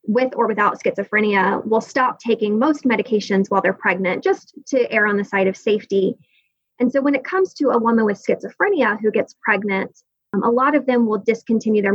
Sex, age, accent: female, 20-39, American